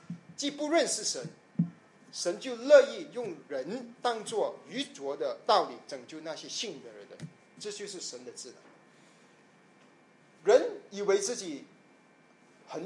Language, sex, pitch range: Japanese, male, 175-285 Hz